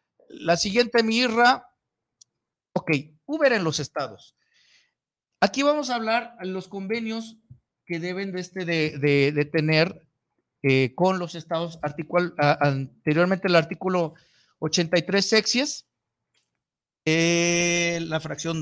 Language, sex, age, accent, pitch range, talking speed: Spanish, male, 50-69, Mexican, 145-200 Hz, 105 wpm